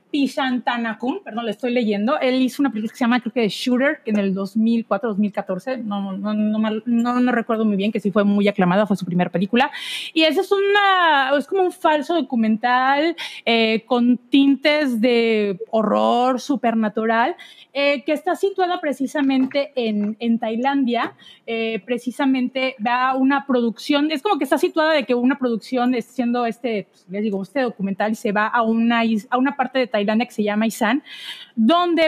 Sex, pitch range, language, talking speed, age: female, 225-285 Hz, Spanish, 185 wpm, 30-49